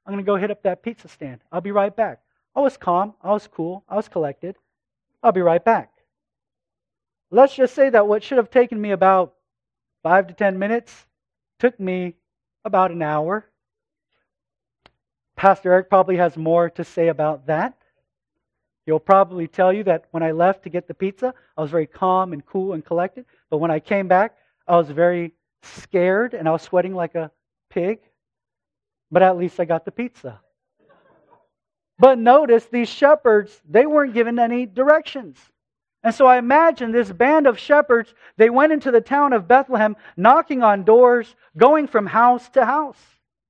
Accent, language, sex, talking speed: American, English, male, 180 wpm